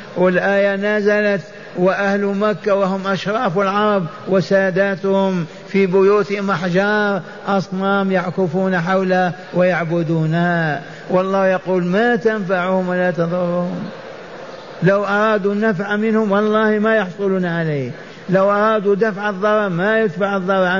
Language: Arabic